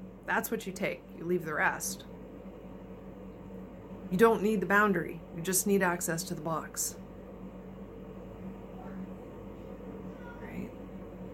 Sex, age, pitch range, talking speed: female, 40-59, 175-205 Hz, 110 wpm